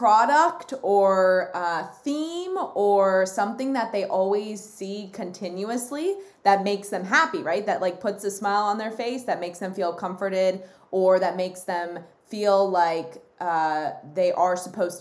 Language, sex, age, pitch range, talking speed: English, female, 20-39, 190-245 Hz, 155 wpm